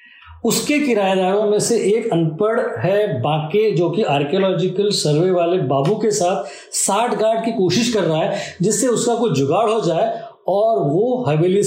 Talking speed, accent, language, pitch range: 165 wpm, native, Hindi, 170-225 Hz